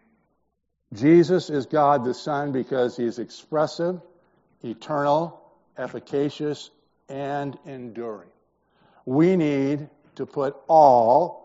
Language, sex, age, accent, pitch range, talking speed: English, male, 60-79, American, 125-155 Hz, 95 wpm